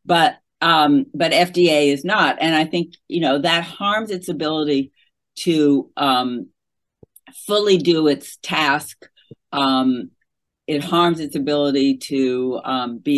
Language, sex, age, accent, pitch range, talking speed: English, female, 50-69, American, 135-170 Hz, 130 wpm